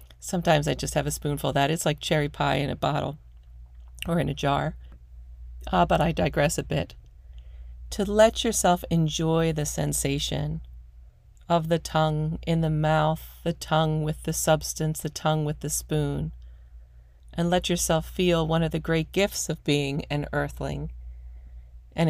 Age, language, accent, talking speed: 40-59, English, American, 165 wpm